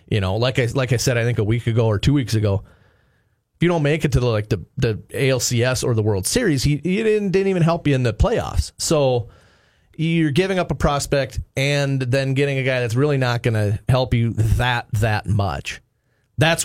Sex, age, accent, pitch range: male, 30-49, American, 110-140 Hz